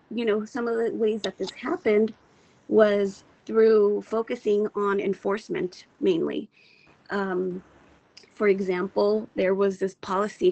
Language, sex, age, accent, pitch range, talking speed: English, female, 30-49, American, 185-220 Hz, 125 wpm